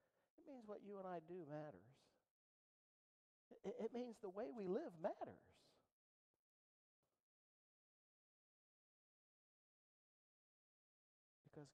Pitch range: 125-175 Hz